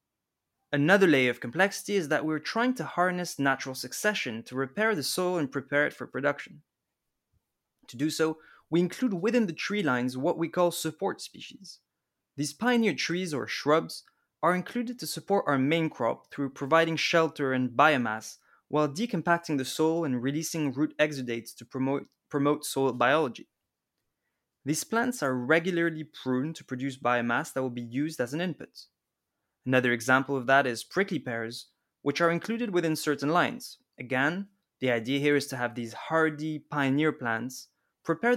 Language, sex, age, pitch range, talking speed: English, male, 20-39, 130-170 Hz, 165 wpm